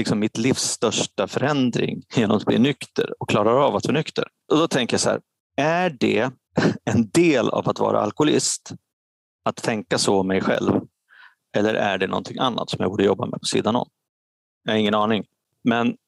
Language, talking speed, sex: Swedish, 195 wpm, male